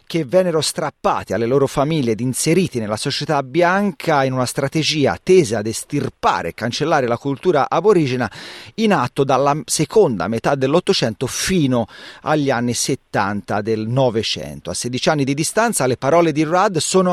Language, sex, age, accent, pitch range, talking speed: Italian, male, 40-59, native, 120-175 Hz, 155 wpm